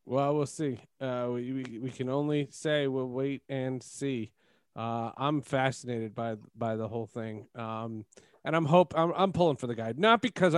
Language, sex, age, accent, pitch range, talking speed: English, male, 40-59, American, 125-165 Hz, 195 wpm